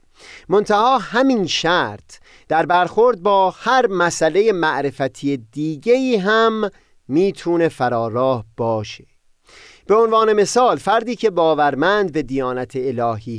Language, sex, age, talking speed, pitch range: Persian, male, 30-49, 105 wpm, 125-200 Hz